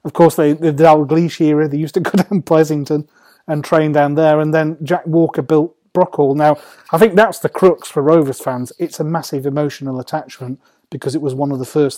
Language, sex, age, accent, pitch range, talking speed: English, male, 30-49, British, 140-160 Hz, 220 wpm